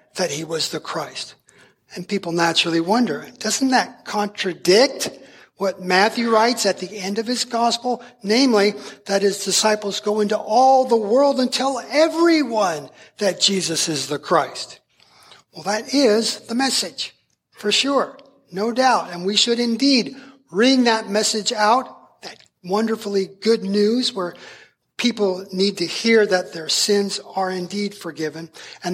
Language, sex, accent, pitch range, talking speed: English, male, American, 190-235 Hz, 145 wpm